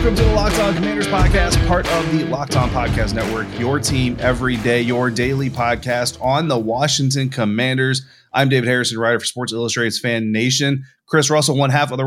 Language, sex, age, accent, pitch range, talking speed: English, male, 30-49, American, 115-140 Hz, 190 wpm